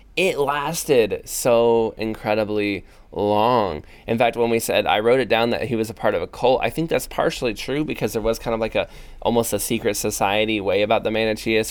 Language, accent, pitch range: English, American, 105-120 Hz